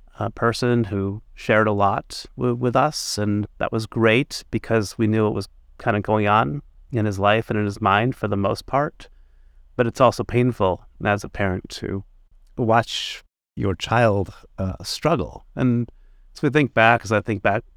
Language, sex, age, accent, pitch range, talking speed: English, male, 30-49, American, 100-115 Hz, 180 wpm